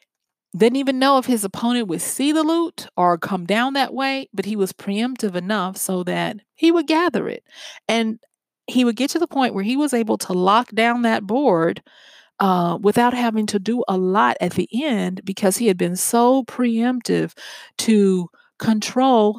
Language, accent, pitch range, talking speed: English, American, 180-250 Hz, 185 wpm